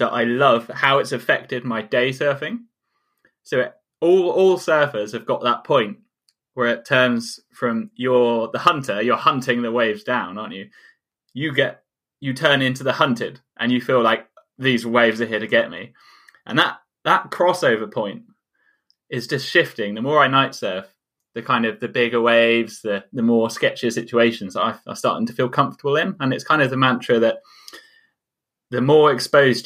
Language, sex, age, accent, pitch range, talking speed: English, male, 10-29, British, 115-145 Hz, 185 wpm